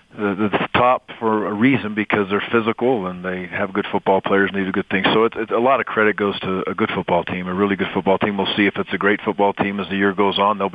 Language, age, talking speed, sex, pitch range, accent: English, 40-59, 290 wpm, male, 95-105 Hz, American